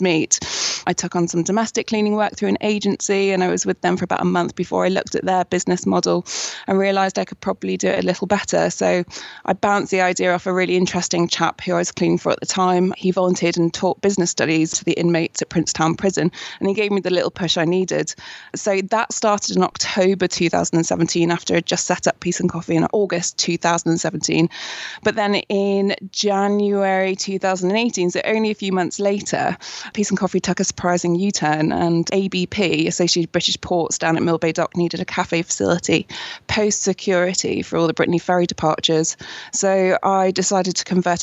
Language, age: English, 20-39